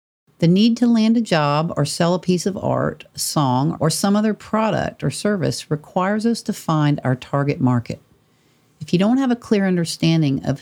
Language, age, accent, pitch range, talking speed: English, 50-69, American, 140-185 Hz, 190 wpm